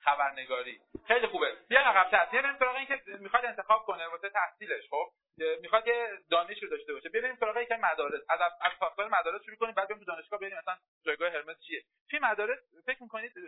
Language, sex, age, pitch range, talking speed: Persian, male, 40-59, 165-270 Hz, 190 wpm